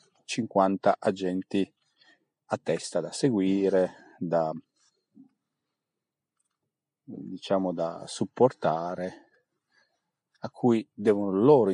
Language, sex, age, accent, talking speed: Italian, male, 40-59, native, 70 wpm